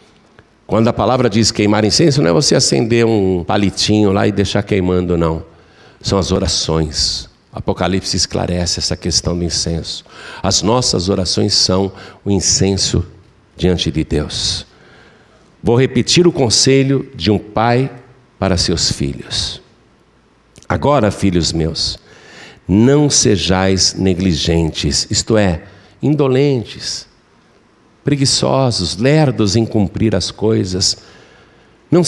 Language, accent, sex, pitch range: Portuguese, Brazilian, male, 95-125 Hz